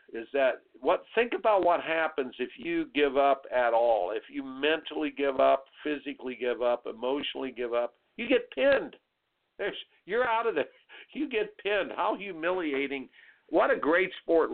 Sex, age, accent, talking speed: male, 60-79, American, 170 wpm